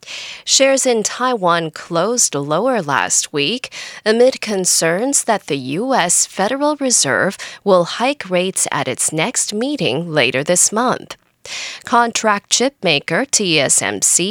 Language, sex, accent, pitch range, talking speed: English, female, American, 170-250 Hz, 115 wpm